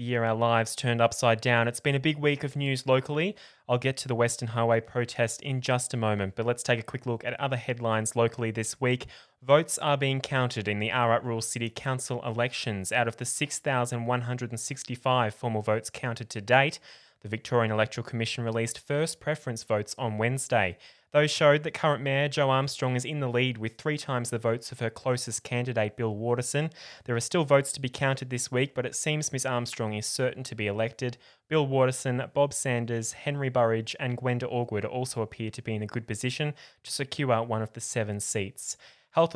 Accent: Australian